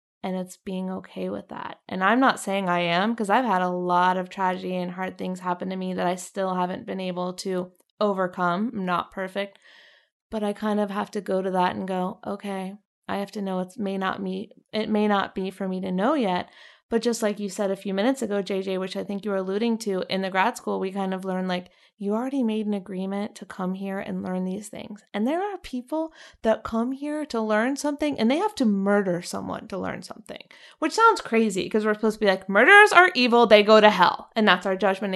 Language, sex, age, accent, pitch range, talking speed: English, female, 20-39, American, 190-230 Hz, 235 wpm